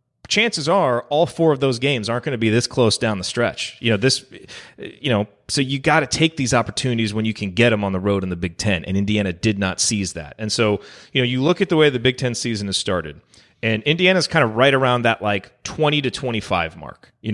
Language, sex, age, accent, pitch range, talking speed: English, male, 30-49, American, 105-135 Hz, 255 wpm